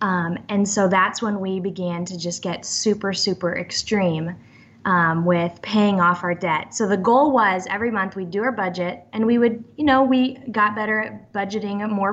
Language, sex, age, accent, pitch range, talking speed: English, female, 10-29, American, 185-230 Hz, 205 wpm